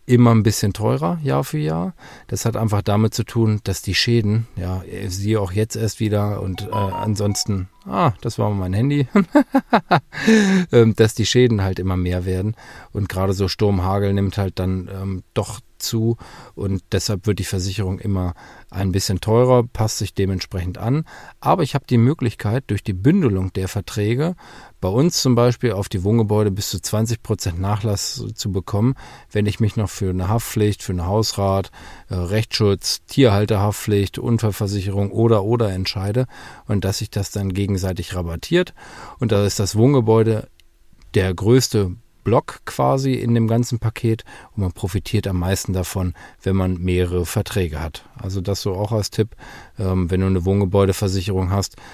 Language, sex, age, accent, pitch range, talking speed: German, male, 40-59, German, 95-110 Hz, 165 wpm